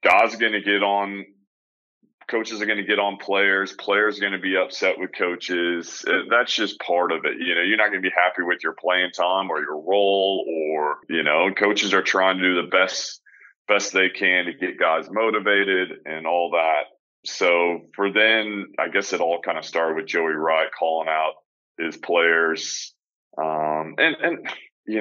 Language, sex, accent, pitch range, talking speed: English, male, American, 85-100 Hz, 195 wpm